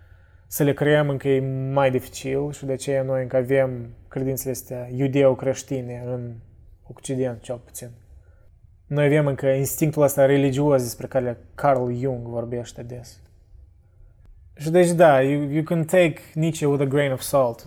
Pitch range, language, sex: 120-150 Hz, Romanian, male